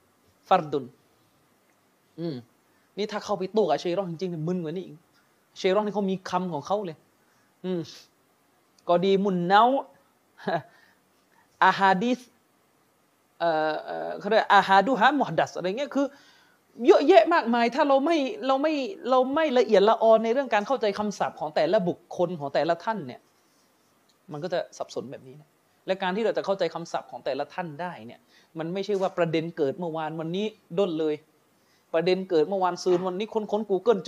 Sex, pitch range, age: male, 175-225 Hz, 30-49